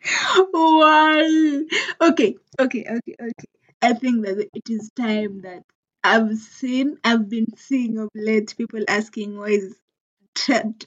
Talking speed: 140 wpm